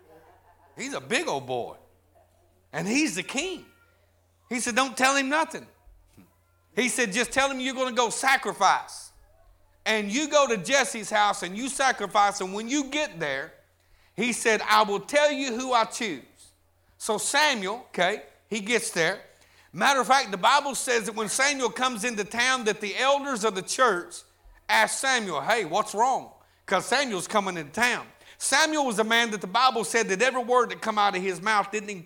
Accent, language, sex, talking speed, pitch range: American, English, male, 190 wpm, 200-260 Hz